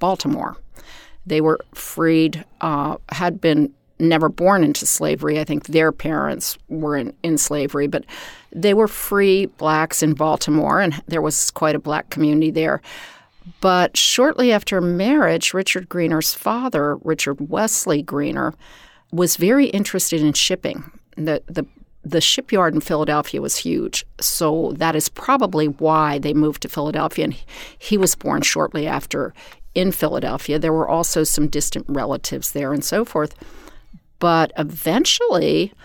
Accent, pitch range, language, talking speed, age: American, 155-190 Hz, English, 145 wpm, 50-69